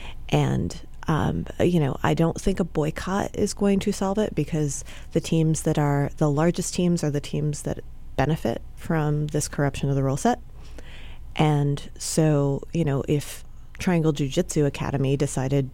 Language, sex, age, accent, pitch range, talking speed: English, female, 30-49, American, 140-165 Hz, 170 wpm